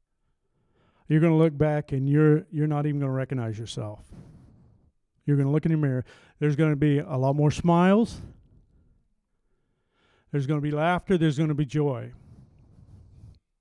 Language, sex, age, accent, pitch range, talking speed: English, male, 50-69, American, 125-155 Hz, 175 wpm